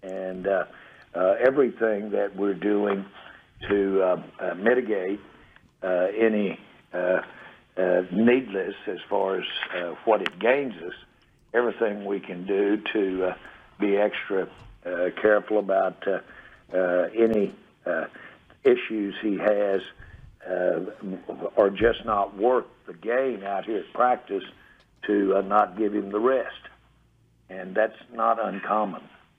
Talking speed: 130 wpm